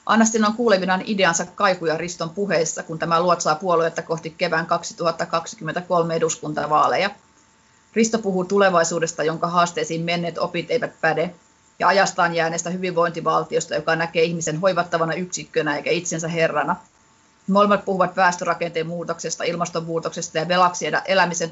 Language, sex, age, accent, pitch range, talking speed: Finnish, female, 30-49, native, 165-185 Hz, 125 wpm